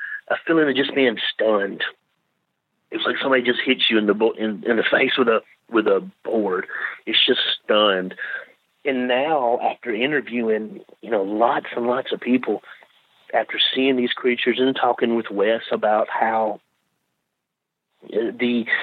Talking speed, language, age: 155 wpm, English, 40-59